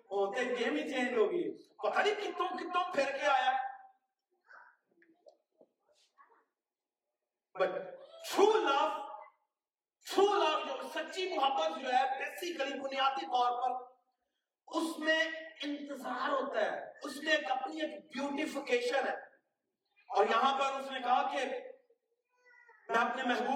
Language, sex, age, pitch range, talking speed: Urdu, male, 40-59, 245-385 Hz, 35 wpm